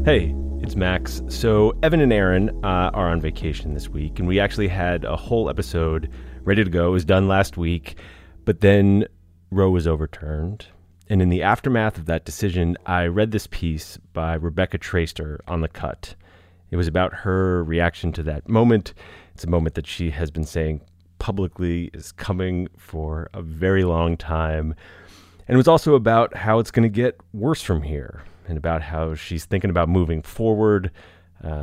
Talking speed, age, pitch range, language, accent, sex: 180 wpm, 30-49, 80-100 Hz, English, American, male